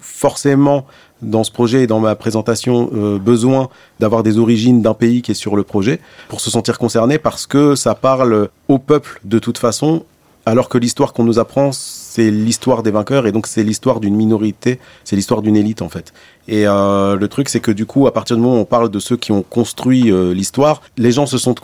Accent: French